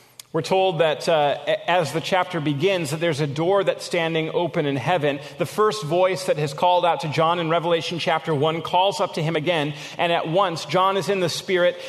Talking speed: 215 wpm